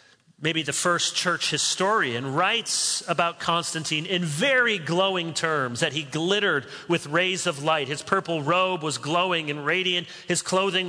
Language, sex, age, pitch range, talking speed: English, male, 40-59, 150-205 Hz, 155 wpm